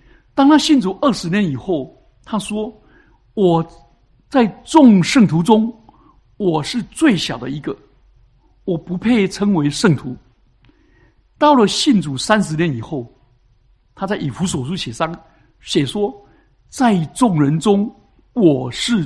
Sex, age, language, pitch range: male, 60-79, Chinese, 150-225 Hz